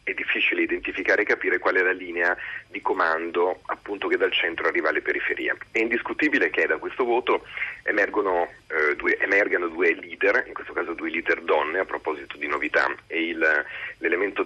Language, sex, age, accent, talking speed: Italian, male, 40-59, native, 180 wpm